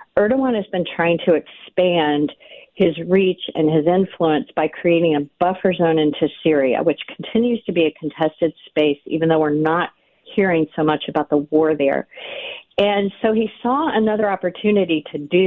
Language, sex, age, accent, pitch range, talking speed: English, female, 50-69, American, 155-195 Hz, 170 wpm